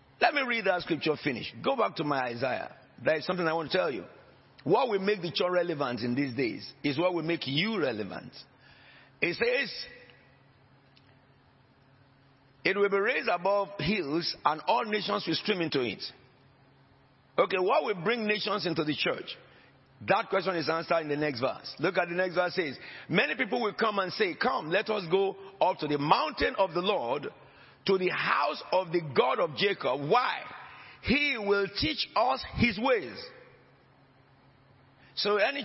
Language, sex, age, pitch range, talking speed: English, male, 50-69, 150-205 Hz, 180 wpm